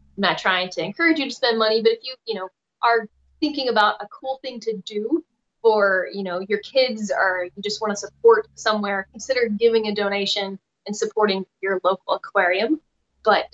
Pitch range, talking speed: 190-230 Hz, 195 wpm